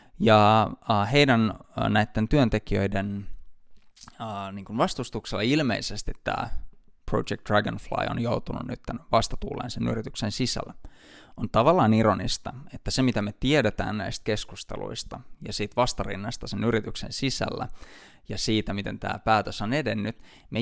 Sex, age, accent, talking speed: male, 20-39, native, 125 wpm